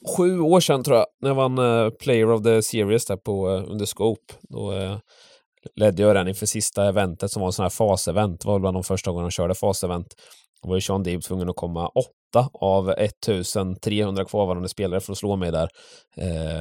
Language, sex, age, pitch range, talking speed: English, male, 20-39, 95-115 Hz, 225 wpm